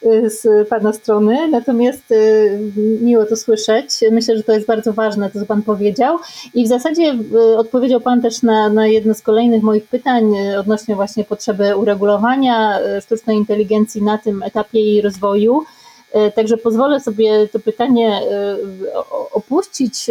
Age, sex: 30-49, female